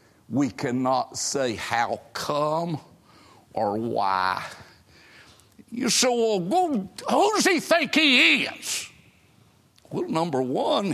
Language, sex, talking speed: English, male, 110 wpm